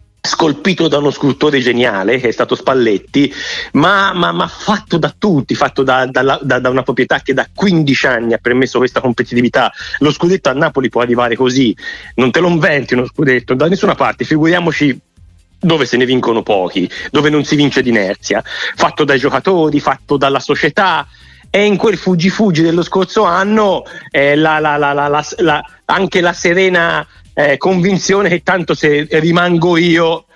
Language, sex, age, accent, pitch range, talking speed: Italian, male, 30-49, native, 130-165 Hz, 175 wpm